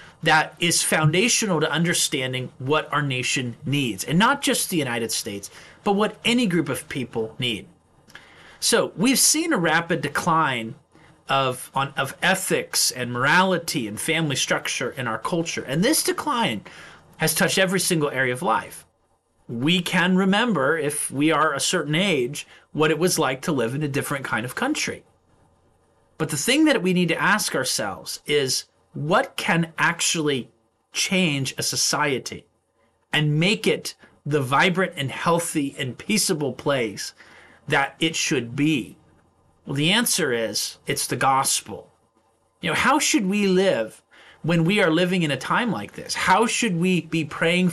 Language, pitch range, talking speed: English, 135-180 Hz, 160 wpm